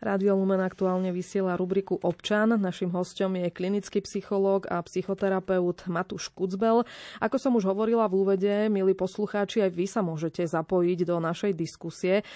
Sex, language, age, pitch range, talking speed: female, Slovak, 20-39, 175-195 Hz, 150 wpm